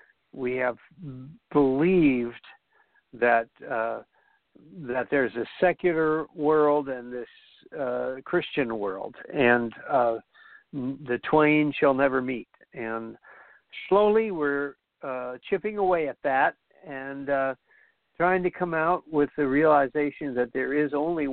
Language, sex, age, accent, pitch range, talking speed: English, male, 60-79, American, 125-155 Hz, 120 wpm